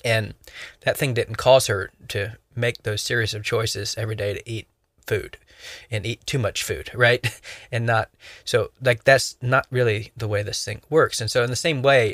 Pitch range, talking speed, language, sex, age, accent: 105-125 Hz, 205 wpm, English, male, 20-39, American